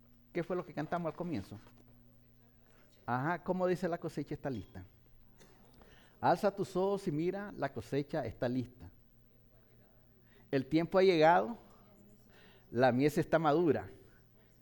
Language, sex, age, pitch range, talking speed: English, male, 50-69, 120-175 Hz, 125 wpm